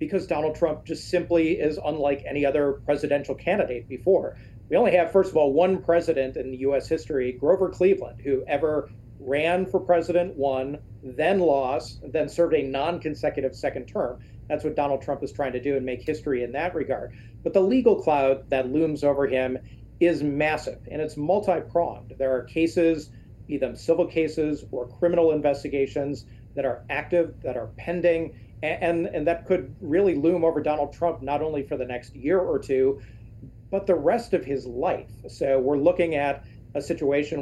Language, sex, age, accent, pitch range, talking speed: English, male, 40-59, American, 130-170 Hz, 180 wpm